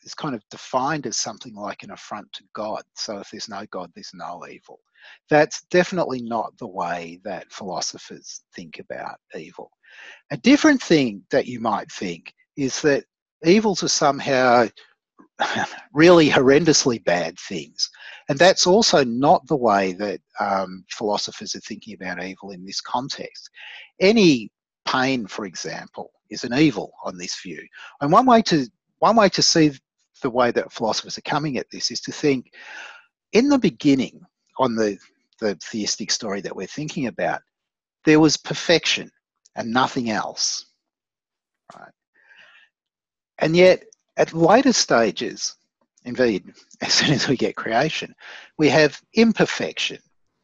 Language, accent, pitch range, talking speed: English, Australian, 120-180 Hz, 150 wpm